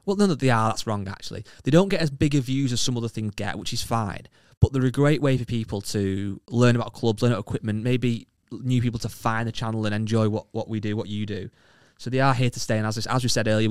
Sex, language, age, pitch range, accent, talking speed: male, English, 20-39, 105-125 Hz, British, 280 wpm